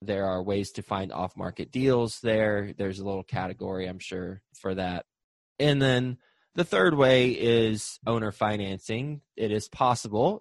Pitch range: 100-125 Hz